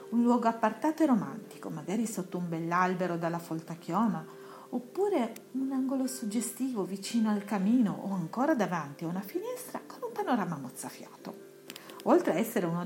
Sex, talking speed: female, 155 wpm